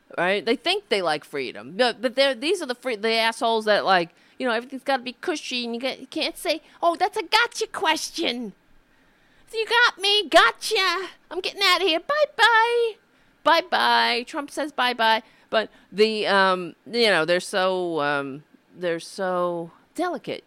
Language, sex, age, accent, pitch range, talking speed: English, female, 40-59, American, 185-280 Hz, 175 wpm